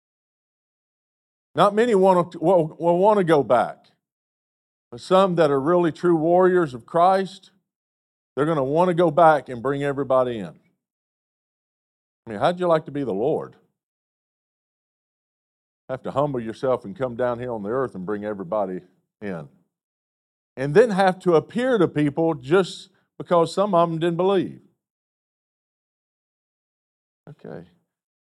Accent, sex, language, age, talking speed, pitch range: American, male, English, 50-69, 145 wpm, 140-185 Hz